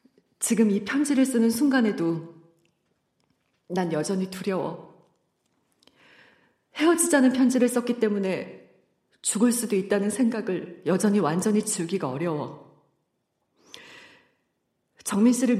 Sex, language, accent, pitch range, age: female, Korean, native, 180-230 Hz, 40-59